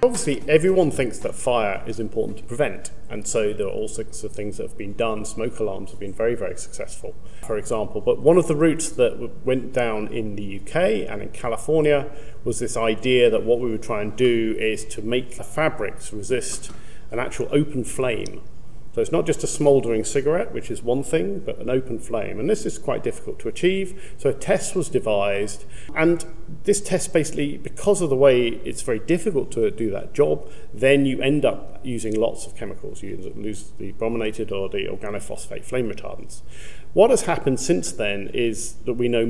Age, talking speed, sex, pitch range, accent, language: 40-59, 200 wpm, male, 115-150 Hz, British, English